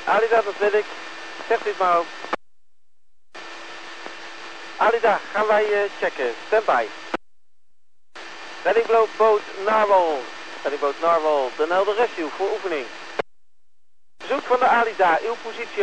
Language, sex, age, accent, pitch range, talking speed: Dutch, male, 50-69, Dutch, 175-215 Hz, 105 wpm